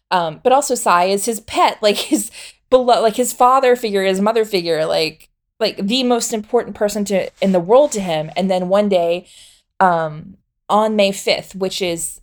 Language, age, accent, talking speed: English, 20-39, American, 190 wpm